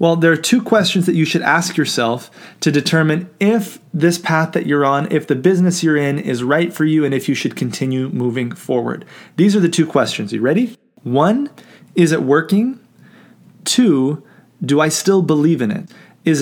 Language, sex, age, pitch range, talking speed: English, male, 30-49, 140-180 Hz, 195 wpm